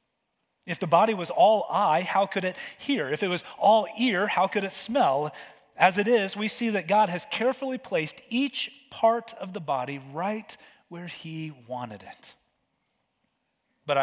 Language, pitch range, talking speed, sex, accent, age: English, 145-200 Hz, 170 wpm, male, American, 30-49